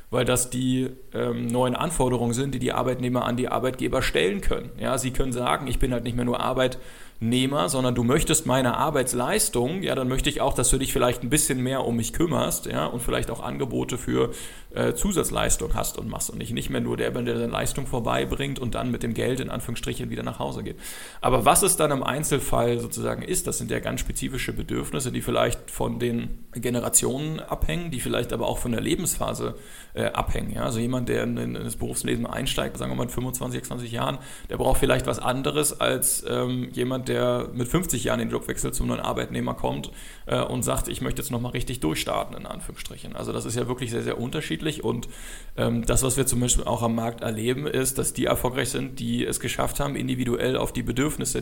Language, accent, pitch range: German, German, 115-130 Hz